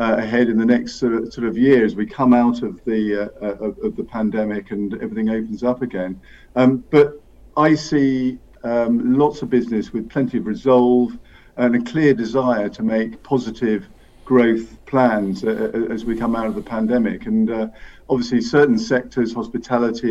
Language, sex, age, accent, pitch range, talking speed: English, male, 50-69, British, 115-135 Hz, 180 wpm